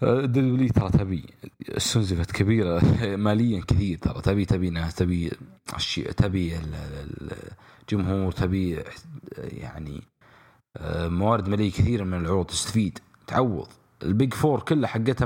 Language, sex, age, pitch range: English, male, 30-49, 90-115 Hz